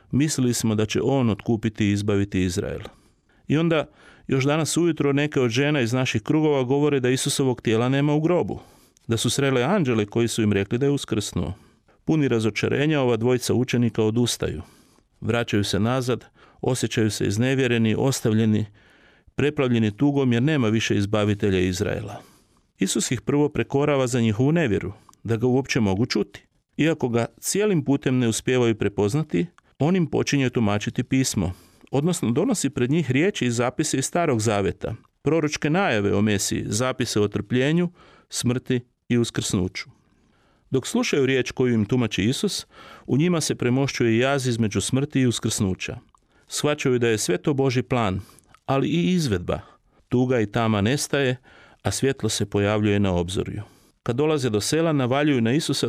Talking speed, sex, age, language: 155 wpm, male, 40-59, Croatian